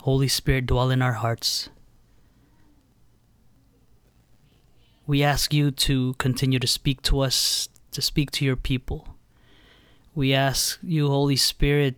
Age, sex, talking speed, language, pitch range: 20-39, male, 125 wpm, English, 115-135 Hz